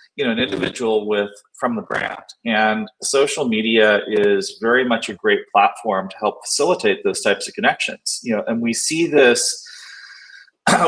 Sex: male